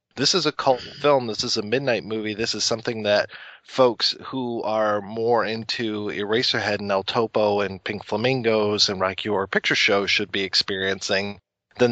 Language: English